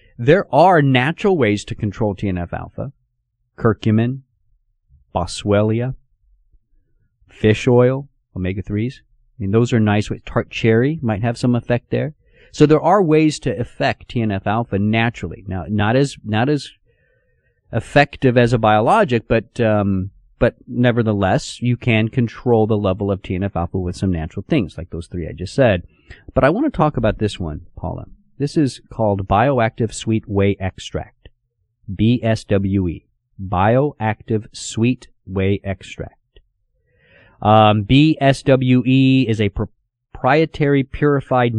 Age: 40-59